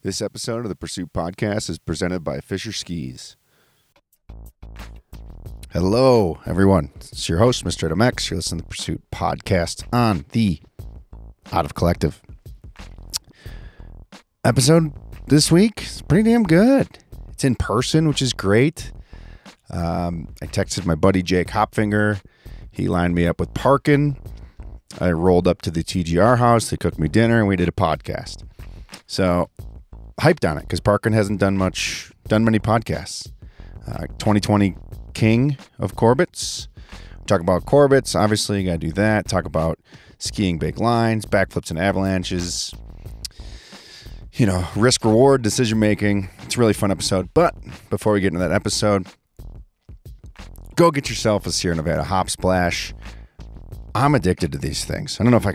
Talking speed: 150 wpm